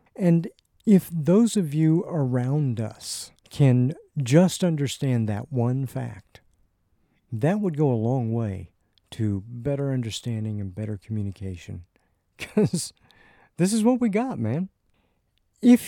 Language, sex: English, male